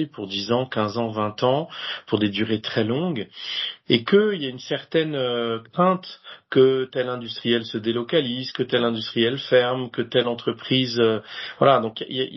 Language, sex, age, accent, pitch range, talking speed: French, male, 40-59, French, 110-135 Hz, 175 wpm